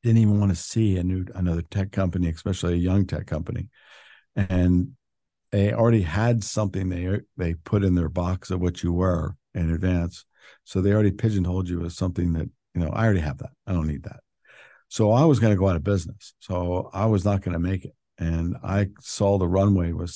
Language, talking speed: English, 215 wpm